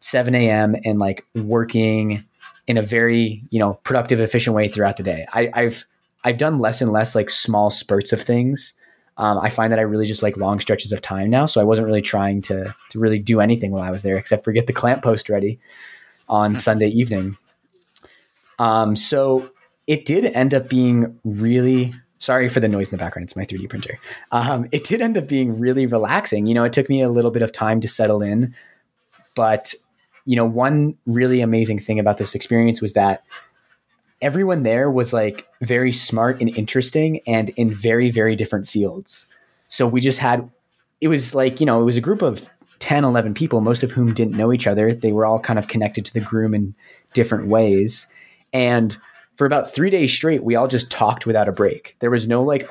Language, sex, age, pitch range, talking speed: English, male, 20-39, 105-125 Hz, 210 wpm